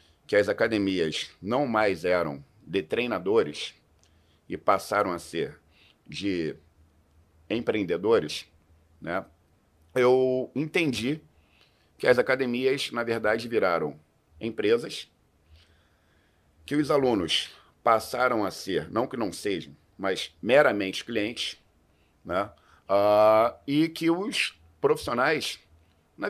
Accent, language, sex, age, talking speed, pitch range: Brazilian, Portuguese, male, 50-69, 100 wpm, 80-130 Hz